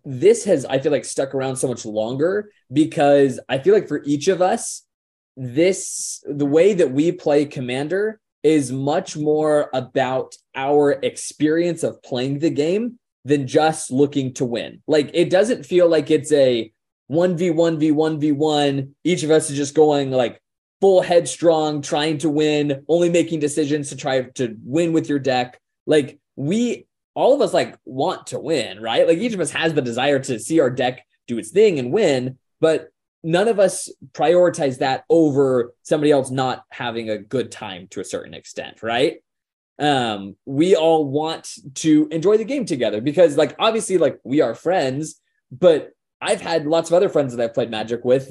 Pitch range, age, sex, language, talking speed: 135-170 Hz, 20-39, male, English, 180 wpm